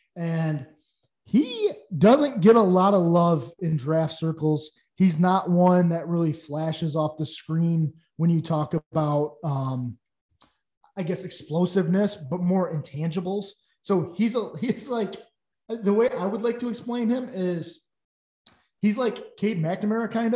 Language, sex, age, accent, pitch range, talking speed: English, male, 20-39, American, 160-200 Hz, 145 wpm